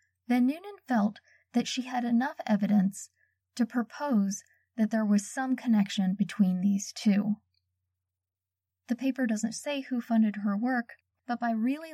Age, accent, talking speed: 10-29, American, 145 wpm